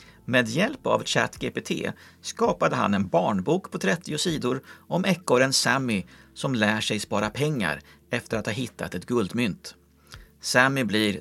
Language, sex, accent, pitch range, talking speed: Swedish, male, native, 105-160 Hz, 145 wpm